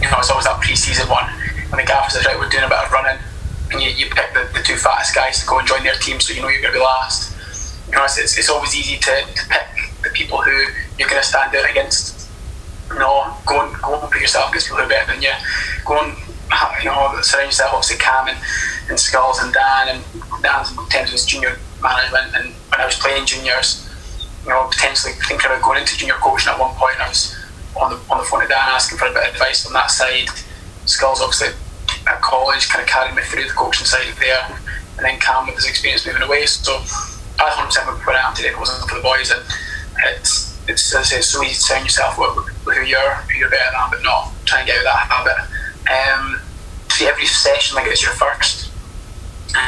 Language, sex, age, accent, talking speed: English, male, 20-39, British, 245 wpm